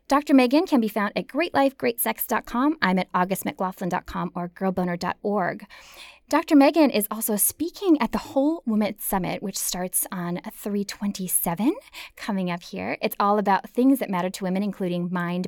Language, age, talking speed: English, 10-29, 150 wpm